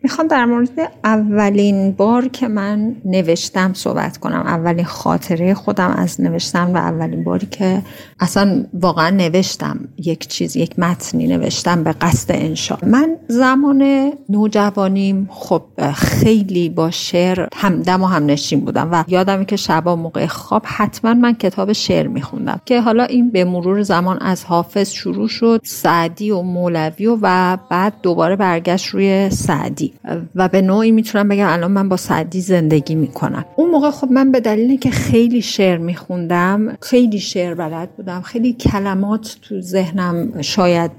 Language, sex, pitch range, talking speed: Persian, female, 175-230 Hz, 150 wpm